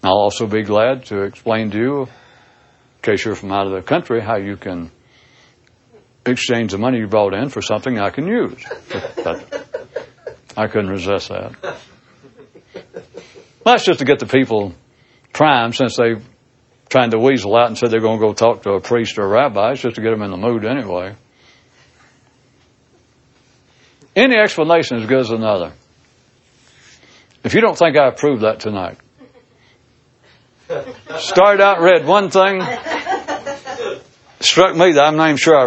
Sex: male